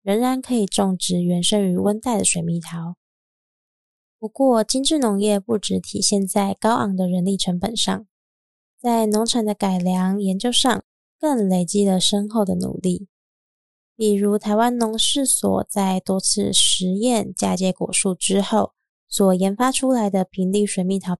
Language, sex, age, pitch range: Chinese, female, 20-39, 185-225 Hz